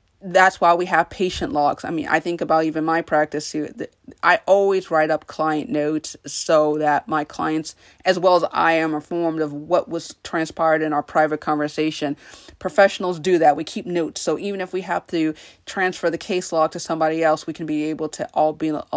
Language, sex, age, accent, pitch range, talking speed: English, female, 30-49, American, 155-180 Hz, 205 wpm